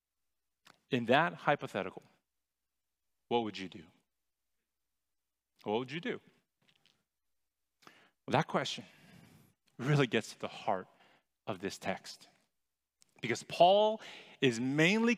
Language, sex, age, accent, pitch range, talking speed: English, male, 40-59, American, 135-190 Hz, 100 wpm